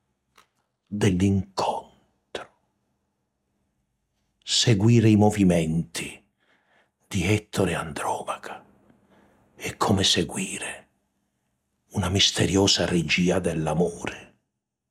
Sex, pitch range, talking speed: male, 80-130 Hz, 55 wpm